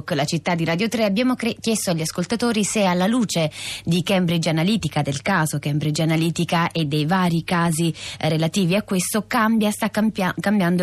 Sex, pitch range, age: female, 160-215 Hz, 20-39